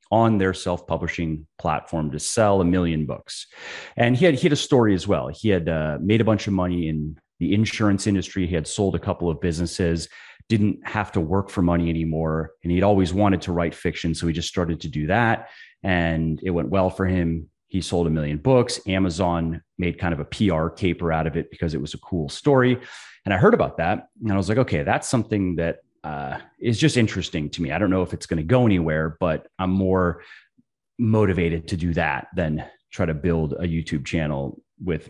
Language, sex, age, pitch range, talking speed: English, male, 30-49, 80-100 Hz, 215 wpm